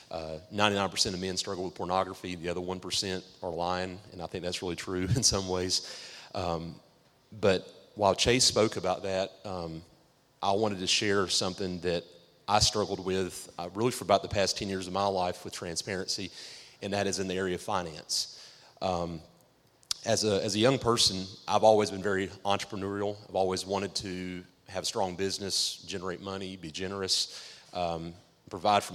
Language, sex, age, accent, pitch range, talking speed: English, male, 30-49, American, 90-100 Hz, 175 wpm